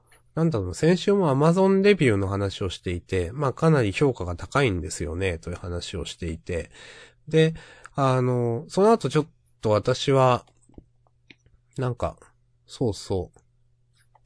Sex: male